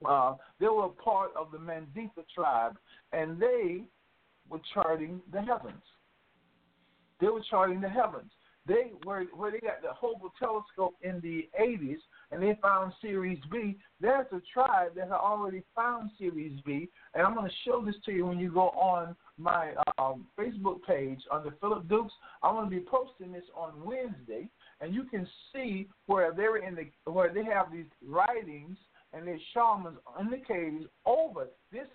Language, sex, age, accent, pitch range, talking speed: English, male, 50-69, American, 175-240 Hz, 175 wpm